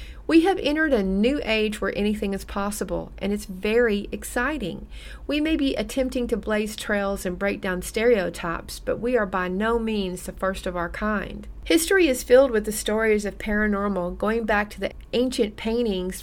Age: 40-59